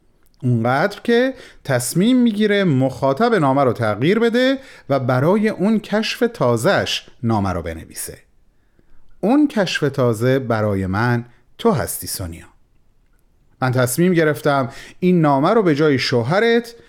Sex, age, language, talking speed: male, 40-59, Persian, 120 wpm